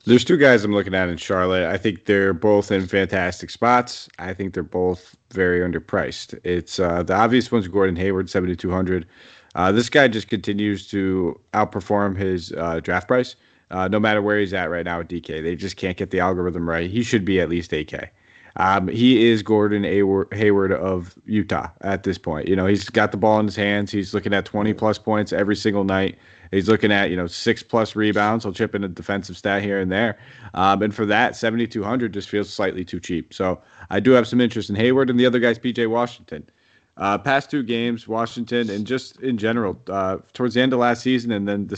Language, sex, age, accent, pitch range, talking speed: English, male, 30-49, American, 95-115 Hz, 215 wpm